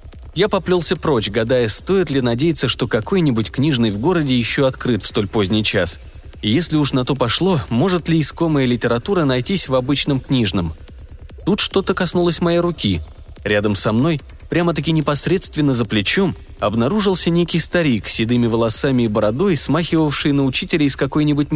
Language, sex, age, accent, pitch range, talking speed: Russian, male, 20-39, native, 95-150 Hz, 160 wpm